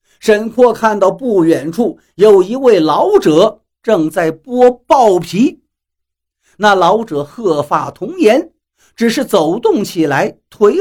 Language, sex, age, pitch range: Chinese, male, 50-69, 145-245 Hz